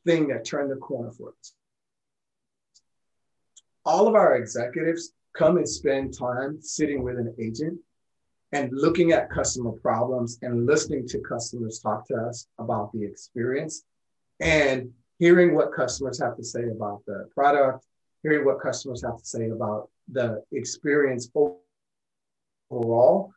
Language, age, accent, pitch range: English, 30-49, American, 120-150 Hz